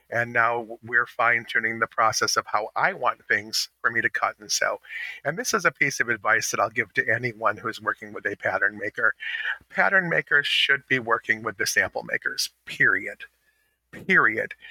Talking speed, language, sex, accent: 195 wpm, English, male, American